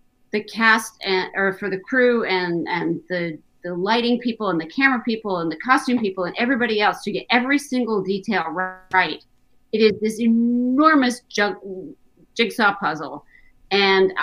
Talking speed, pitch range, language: 160 wpm, 185-240 Hz, English